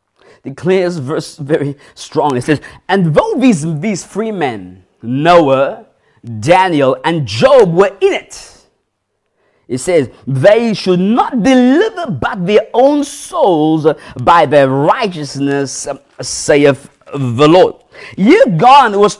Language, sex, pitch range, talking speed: English, male, 165-255 Hz, 120 wpm